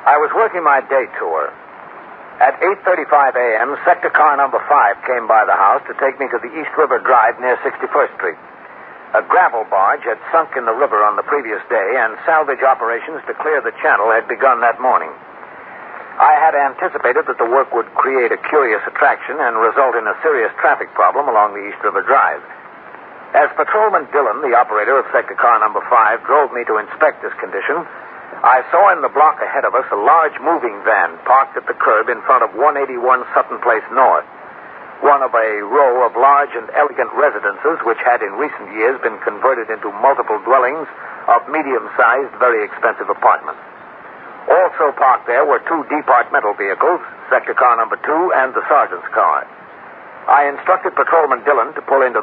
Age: 60-79